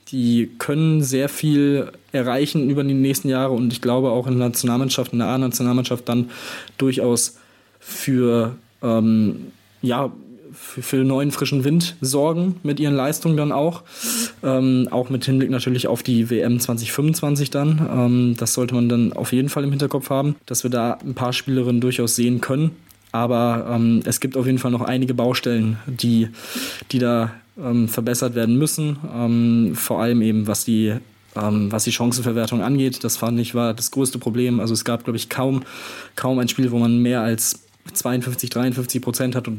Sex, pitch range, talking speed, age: male, 120-135 Hz, 175 wpm, 20-39